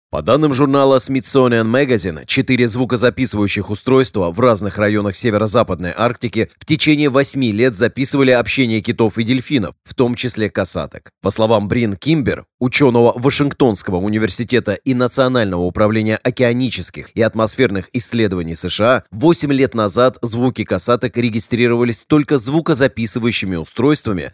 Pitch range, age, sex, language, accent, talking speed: 105-130 Hz, 30-49, male, Russian, native, 125 wpm